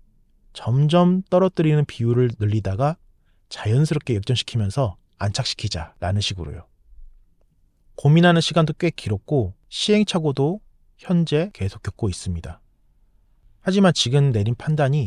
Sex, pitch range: male, 100-150 Hz